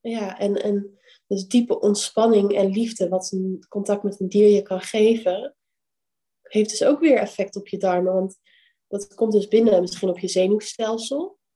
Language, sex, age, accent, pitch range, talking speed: Dutch, female, 20-39, Dutch, 195-225 Hz, 175 wpm